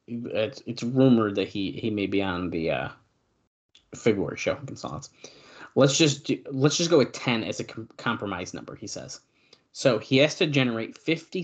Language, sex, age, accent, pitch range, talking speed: English, male, 30-49, American, 105-135 Hz, 185 wpm